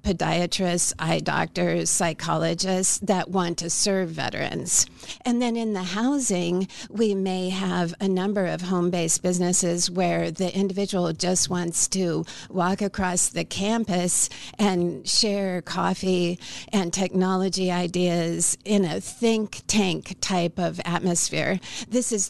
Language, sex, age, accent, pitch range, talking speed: English, female, 50-69, American, 175-205 Hz, 125 wpm